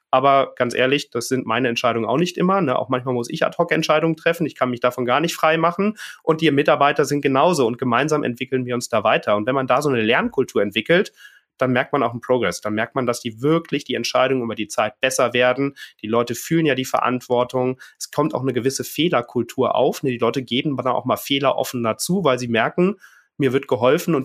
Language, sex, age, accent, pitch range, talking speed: German, male, 30-49, German, 125-150 Hz, 235 wpm